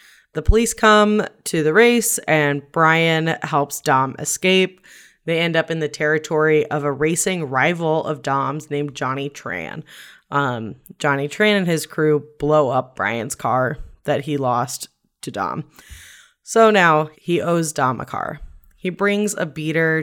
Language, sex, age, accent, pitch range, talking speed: English, female, 20-39, American, 140-175 Hz, 155 wpm